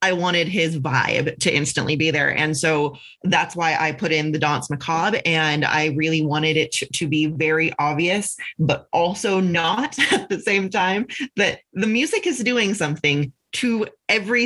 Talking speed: 180 wpm